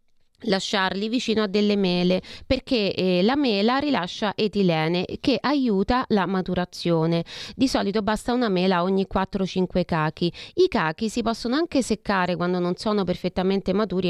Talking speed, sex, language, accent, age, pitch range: 145 wpm, female, Italian, native, 30-49, 185-245 Hz